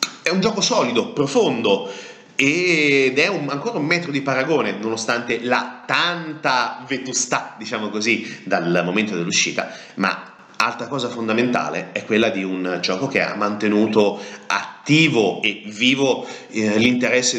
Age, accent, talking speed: 30-49, native, 135 wpm